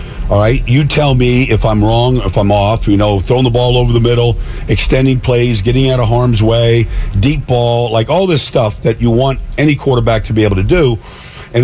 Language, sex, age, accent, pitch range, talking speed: English, male, 50-69, American, 110-135 Hz, 220 wpm